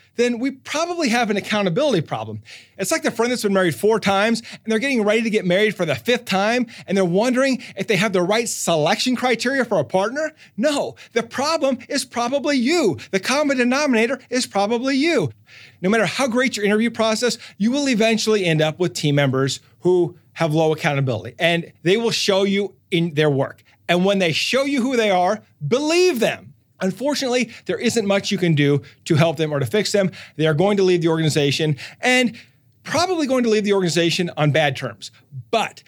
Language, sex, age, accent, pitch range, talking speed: English, male, 30-49, American, 160-235 Hz, 200 wpm